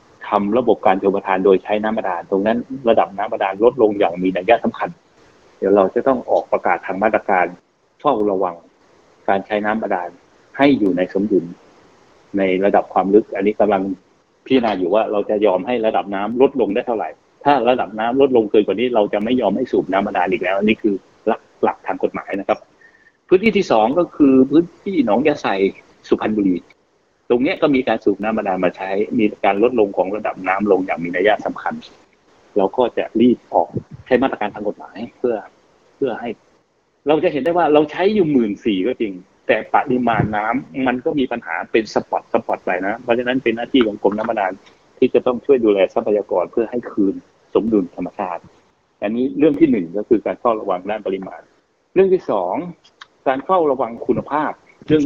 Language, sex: Thai, male